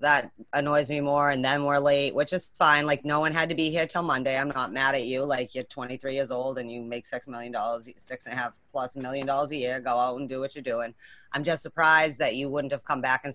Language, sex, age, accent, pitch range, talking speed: English, female, 30-49, American, 135-175 Hz, 280 wpm